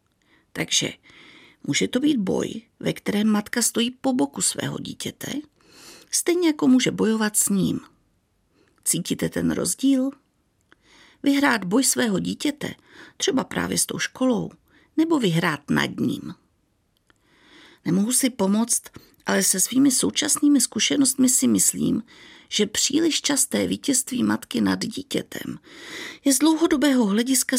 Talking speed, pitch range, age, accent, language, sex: 120 wpm, 225-280 Hz, 50-69, native, Czech, female